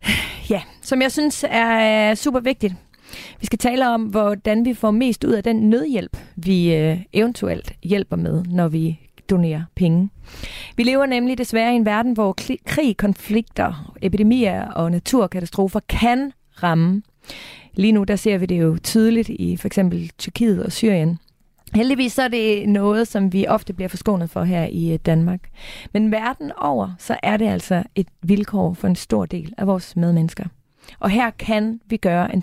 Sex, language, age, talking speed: female, Danish, 30-49, 165 wpm